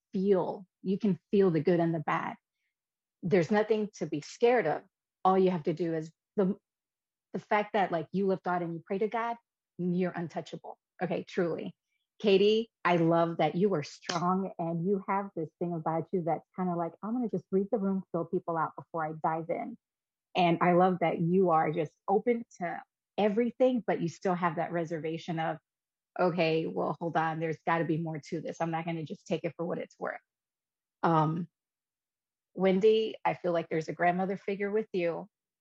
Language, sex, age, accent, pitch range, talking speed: English, female, 30-49, American, 165-195 Hz, 200 wpm